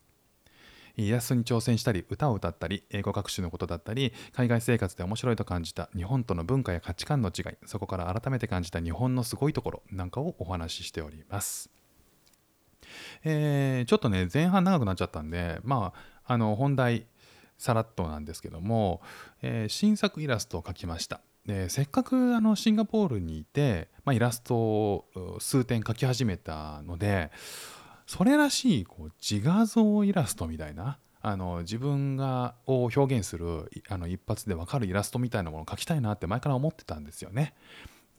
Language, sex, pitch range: Japanese, male, 95-145 Hz